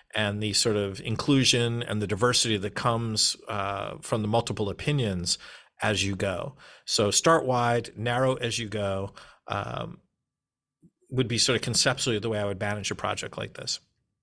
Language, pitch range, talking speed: English, 105-125 Hz, 170 wpm